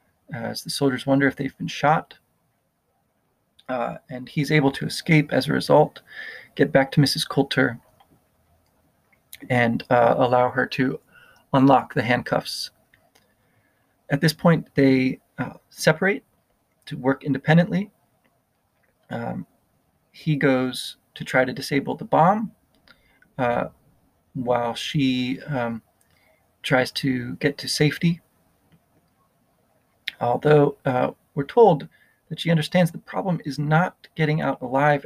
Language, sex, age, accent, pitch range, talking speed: English, male, 30-49, American, 130-155 Hz, 125 wpm